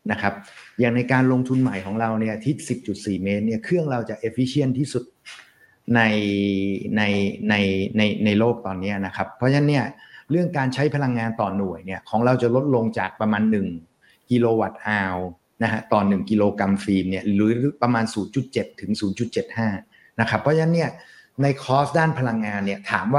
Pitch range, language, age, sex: 105-130 Hz, Thai, 60-79, male